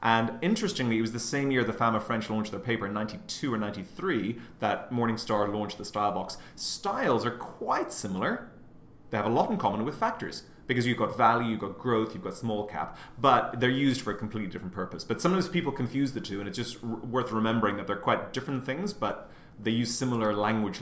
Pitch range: 105-130 Hz